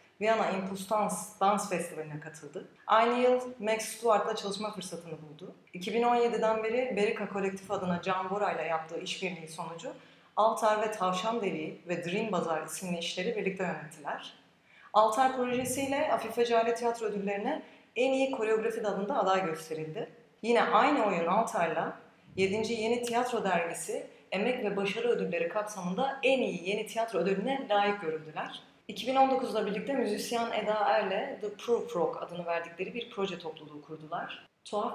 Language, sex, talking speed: Turkish, female, 140 wpm